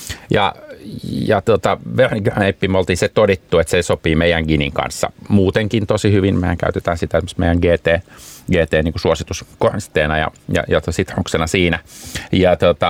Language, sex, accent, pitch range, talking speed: Finnish, male, native, 80-105 Hz, 145 wpm